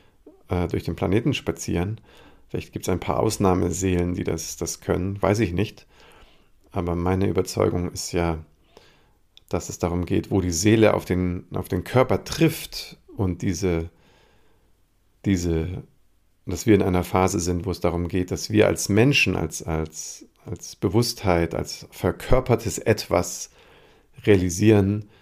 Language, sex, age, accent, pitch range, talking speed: German, male, 40-59, German, 85-100 Hz, 140 wpm